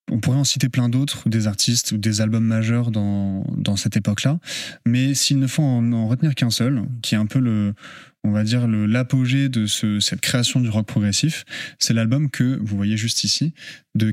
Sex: male